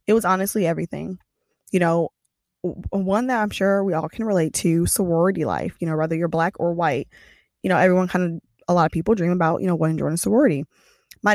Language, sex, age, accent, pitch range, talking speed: English, female, 20-39, American, 165-190 Hz, 215 wpm